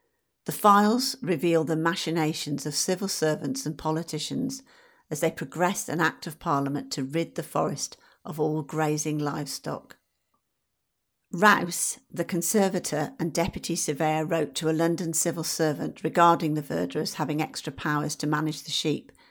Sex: female